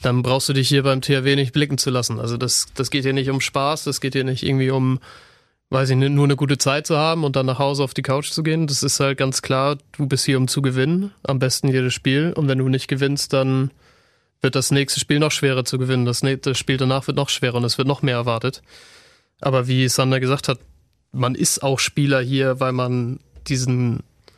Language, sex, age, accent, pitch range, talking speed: German, male, 30-49, German, 130-145 Hz, 240 wpm